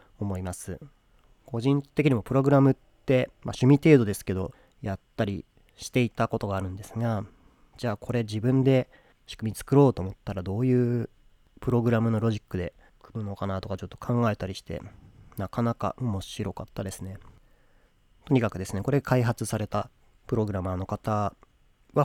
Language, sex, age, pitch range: Japanese, male, 30-49, 95-125 Hz